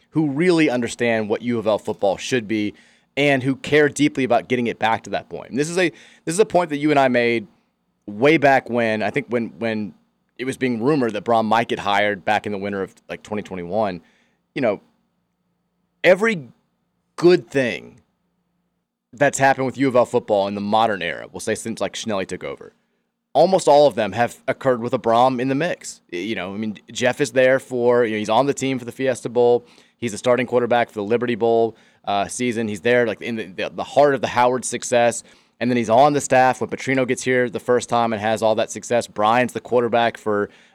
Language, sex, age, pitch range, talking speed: English, male, 30-49, 110-130 Hz, 220 wpm